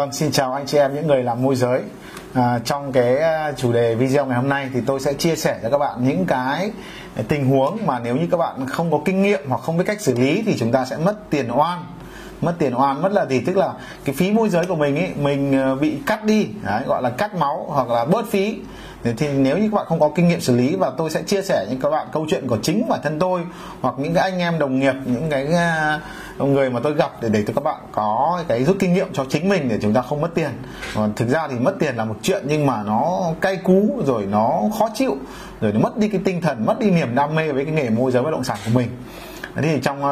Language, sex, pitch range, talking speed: Vietnamese, male, 130-180 Hz, 270 wpm